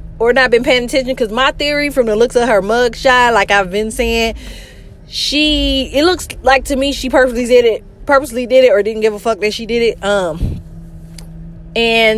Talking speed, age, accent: 210 wpm, 20-39, American